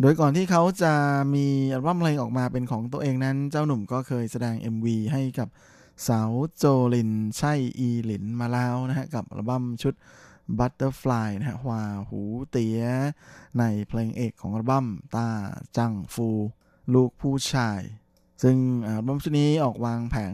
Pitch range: 115-135 Hz